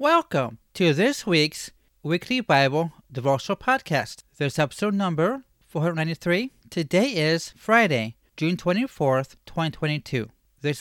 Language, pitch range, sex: English, 135-180 Hz, male